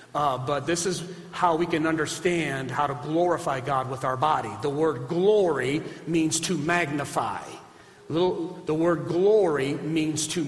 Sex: male